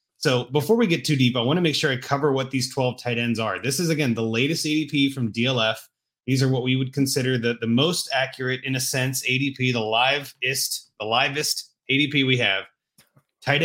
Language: English